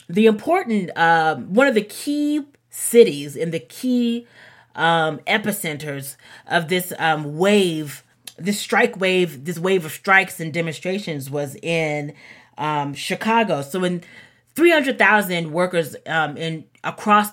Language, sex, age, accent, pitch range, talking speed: English, female, 30-49, American, 155-195 Hz, 130 wpm